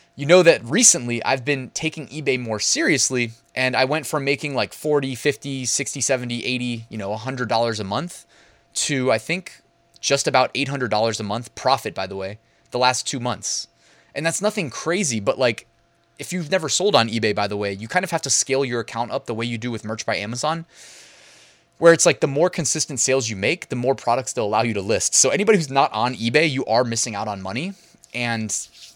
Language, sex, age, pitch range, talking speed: English, male, 20-39, 115-145 Hz, 220 wpm